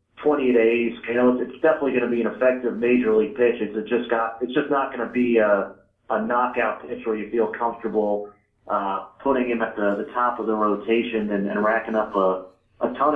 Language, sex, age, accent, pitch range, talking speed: English, male, 40-59, American, 110-130 Hz, 220 wpm